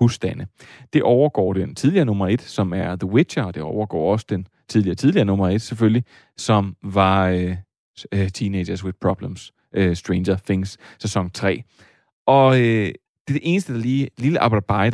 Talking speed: 170 wpm